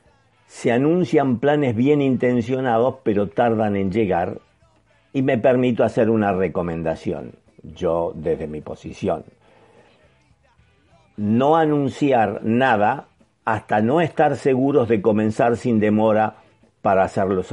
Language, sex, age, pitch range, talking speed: Spanish, male, 50-69, 105-130 Hz, 110 wpm